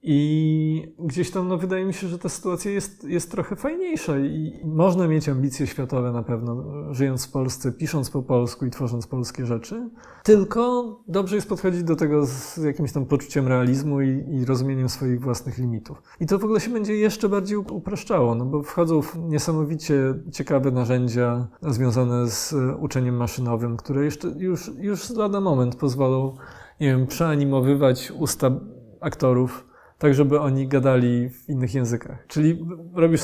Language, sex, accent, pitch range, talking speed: Polish, male, native, 130-165 Hz, 160 wpm